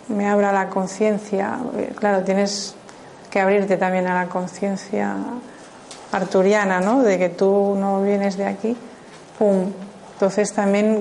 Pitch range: 190-215 Hz